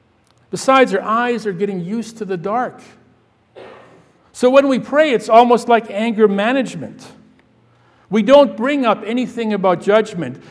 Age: 60-79